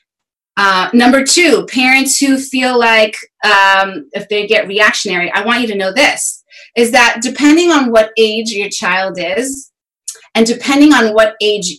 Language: English